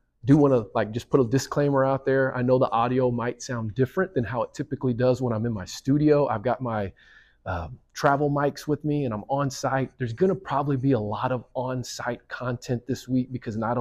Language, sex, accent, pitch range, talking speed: English, male, American, 110-130 Hz, 235 wpm